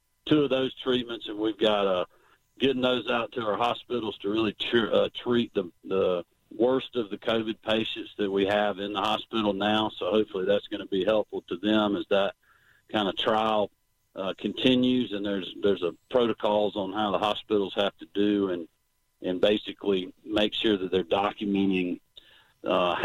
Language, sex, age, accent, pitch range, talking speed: English, male, 50-69, American, 100-110 Hz, 180 wpm